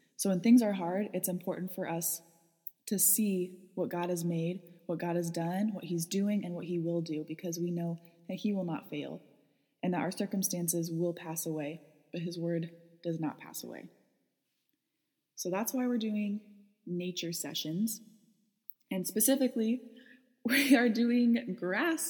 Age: 20-39